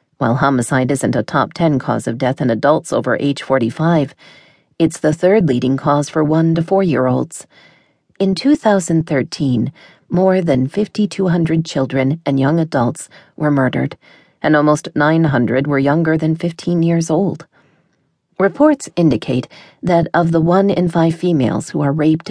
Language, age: English, 40-59